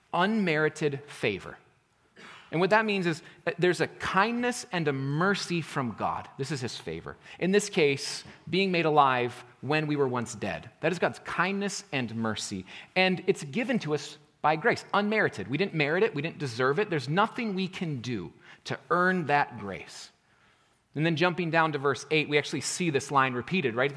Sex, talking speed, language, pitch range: male, 190 wpm, English, 140-195 Hz